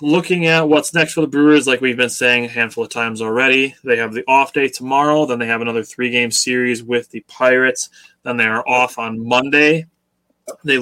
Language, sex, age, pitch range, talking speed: English, male, 20-39, 115-140 Hz, 210 wpm